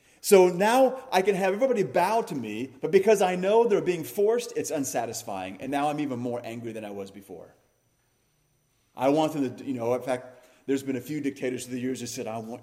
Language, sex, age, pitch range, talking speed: English, male, 40-59, 115-155 Hz, 230 wpm